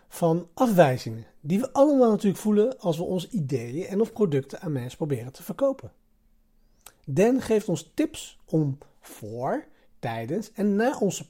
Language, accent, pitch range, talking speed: Dutch, Dutch, 130-210 Hz, 155 wpm